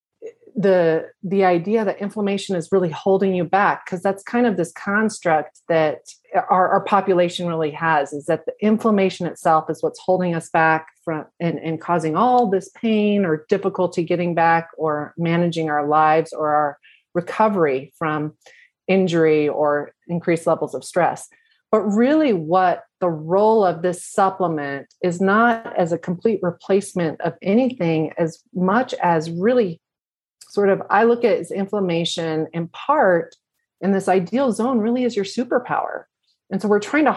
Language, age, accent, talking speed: English, 30-49, American, 160 wpm